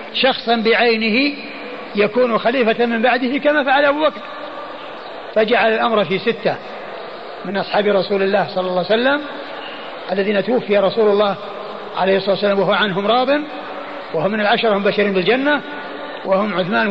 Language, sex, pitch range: Arabic, male, 205-250 Hz